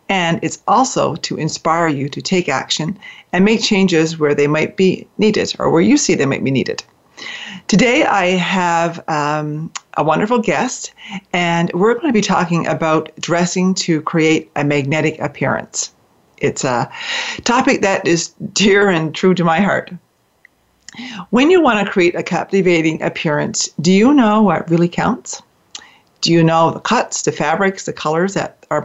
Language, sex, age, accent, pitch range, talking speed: English, female, 40-59, American, 160-200 Hz, 170 wpm